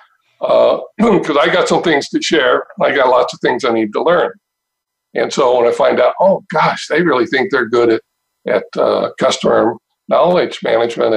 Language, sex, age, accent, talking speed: English, male, 60-79, American, 195 wpm